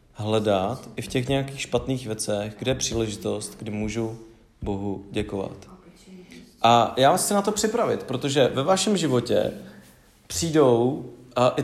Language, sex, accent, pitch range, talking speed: English, male, Czech, 115-145 Hz, 145 wpm